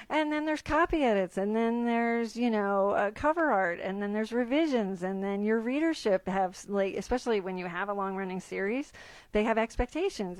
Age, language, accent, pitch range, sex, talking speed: 40-59, English, American, 185-240 Hz, female, 190 wpm